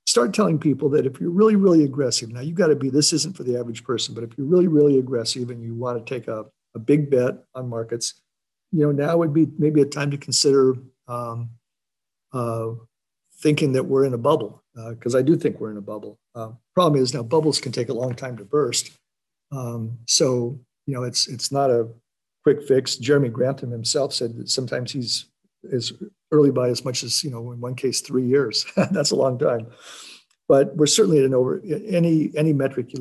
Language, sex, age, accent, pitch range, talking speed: English, male, 50-69, American, 120-140 Hz, 215 wpm